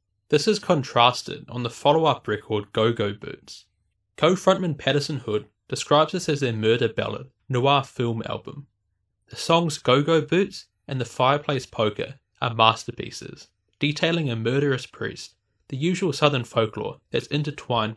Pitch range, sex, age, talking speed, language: 110-150 Hz, male, 20-39, 145 wpm, English